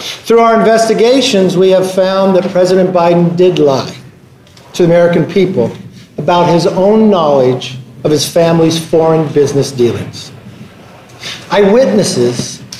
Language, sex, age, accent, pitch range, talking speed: English, male, 50-69, American, 135-185 Hz, 120 wpm